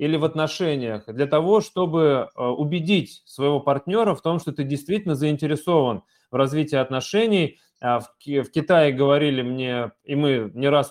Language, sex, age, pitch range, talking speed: Russian, male, 20-39, 130-170 Hz, 145 wpm